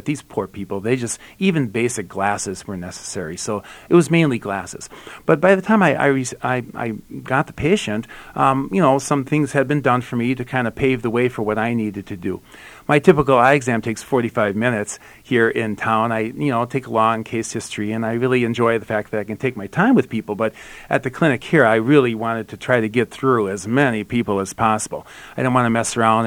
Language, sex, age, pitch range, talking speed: English, male, 40-59, 110-135 Hz, 240 wpm